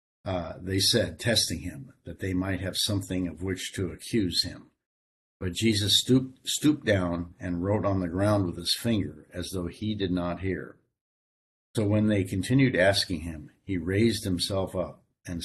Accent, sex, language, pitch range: American, male, English, 90-105 Hz